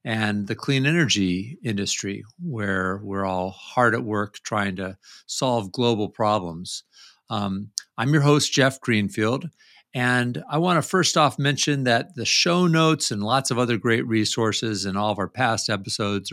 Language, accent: English, American